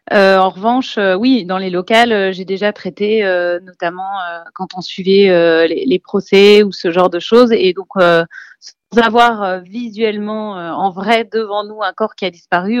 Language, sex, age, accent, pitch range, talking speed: French, female, 30-49, French, 190-230 Hz, 205 wpm